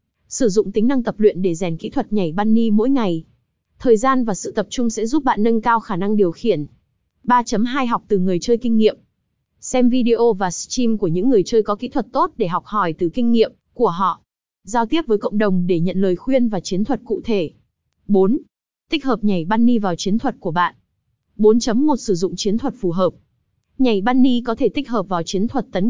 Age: 20-39